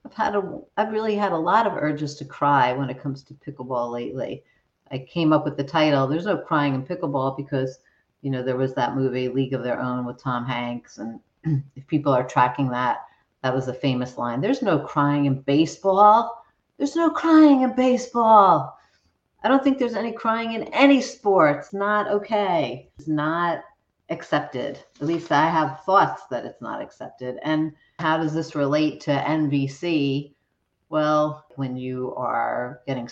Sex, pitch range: female, 130-165 Hz